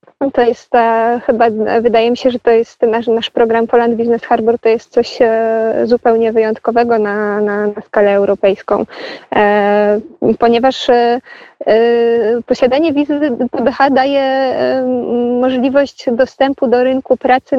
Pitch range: 225-245 Hz